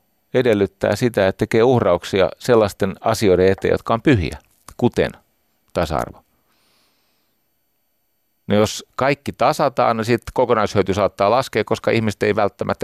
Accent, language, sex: native, Finnish, male